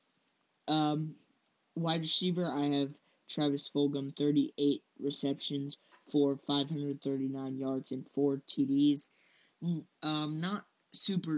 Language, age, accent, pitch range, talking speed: English, 20-39, American, 140-155 Hz, 105 wpm